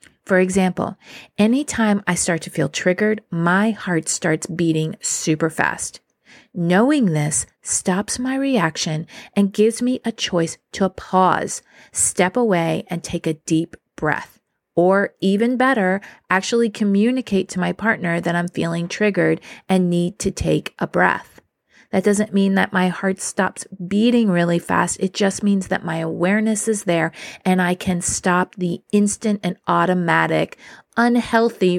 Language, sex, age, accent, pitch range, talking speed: English, female, 30-49, American, 170-210 Hz, 145 wpm